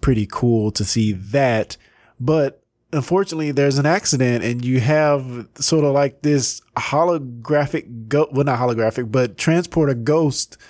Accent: American